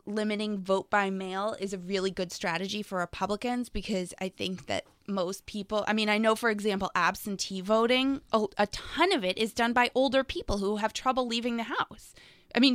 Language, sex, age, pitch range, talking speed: English, female, 20-39, 190-235 Hz, 200 wpm